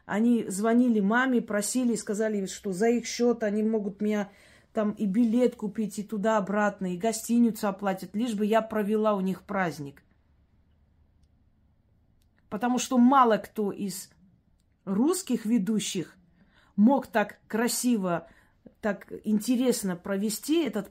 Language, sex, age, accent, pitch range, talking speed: Russian, female, 30-49, native, 200-240 Hz, 120 wpm